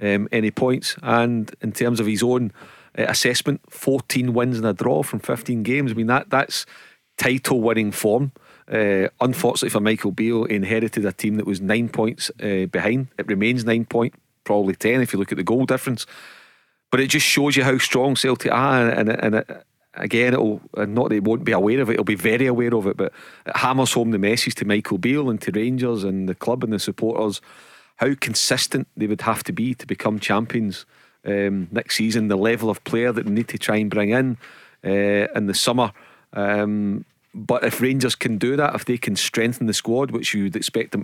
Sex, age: male, 40-59